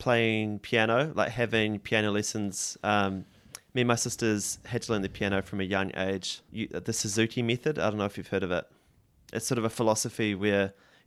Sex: male